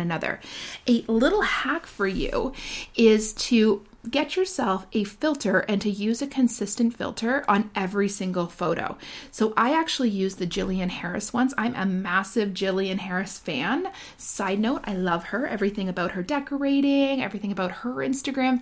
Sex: female